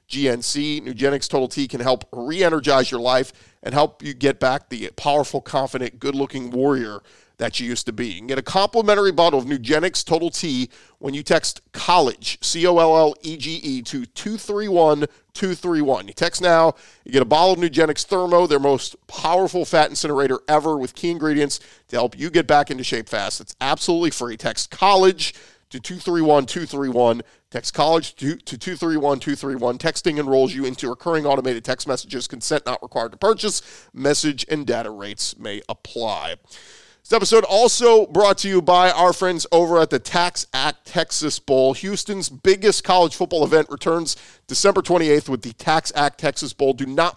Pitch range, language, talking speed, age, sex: 135-175 Hz, English, 165 wpm, 40-59, male